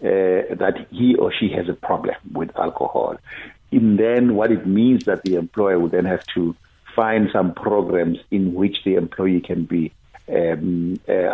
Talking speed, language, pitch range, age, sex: 175 wpm, English, 90-110 Hz, 60-79, male